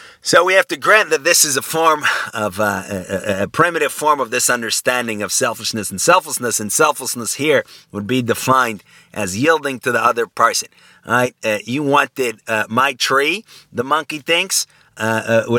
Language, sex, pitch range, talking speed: English, male, 110-155 Hz, 180 wpm